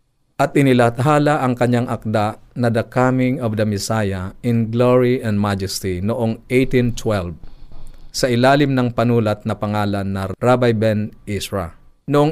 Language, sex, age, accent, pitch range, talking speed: Filipino, male, 50-69, native, 110-130 Hz, 135 wpm